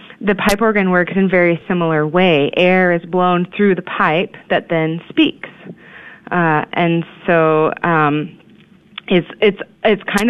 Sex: female